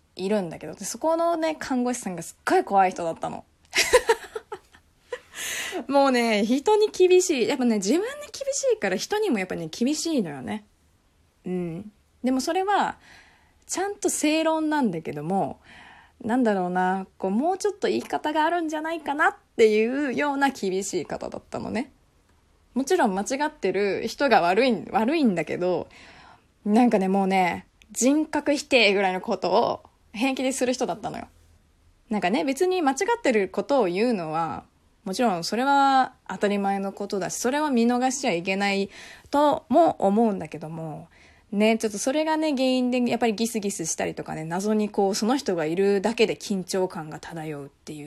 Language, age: Japanese, 20-39